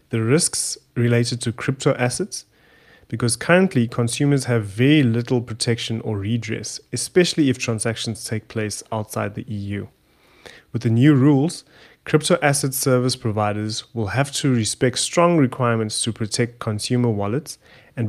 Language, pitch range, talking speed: English, 110-135 Hz, 140 wpm